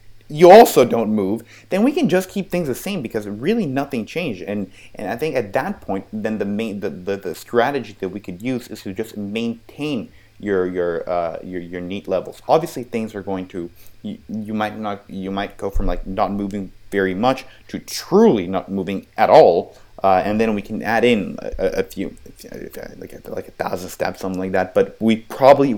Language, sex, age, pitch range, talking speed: German, male, 30-49, 95-115 Hz, 210 wpm